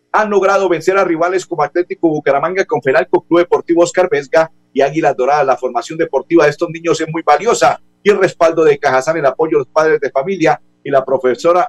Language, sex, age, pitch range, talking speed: Spanish, male, 50-69, 140-185 Hz, 210 wpm